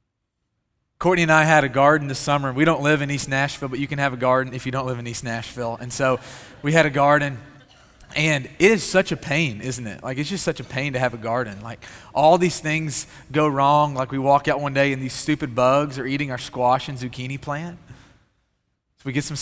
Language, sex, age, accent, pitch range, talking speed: English, male, 30-49, American, 125-155 Hz, 240 wpm